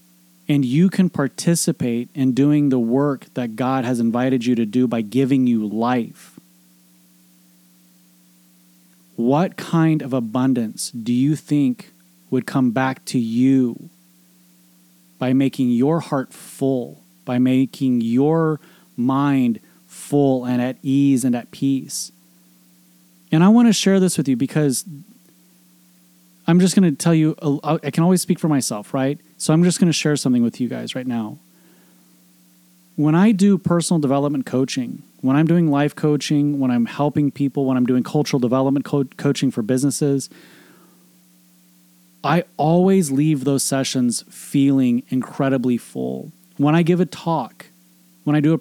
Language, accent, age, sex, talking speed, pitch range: English, American, 30-49, male, 150 wpm, 115-150 Hz